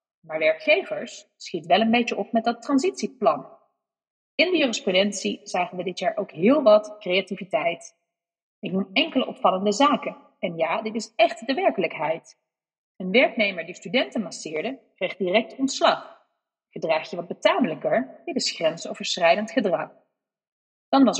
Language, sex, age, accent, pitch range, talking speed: Dutch, female, 30-49, Dutch, 185-265 Hz, 145 wpm